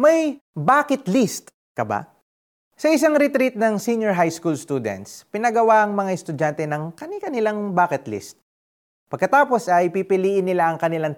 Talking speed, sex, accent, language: 145 wpm, male, native, Filipino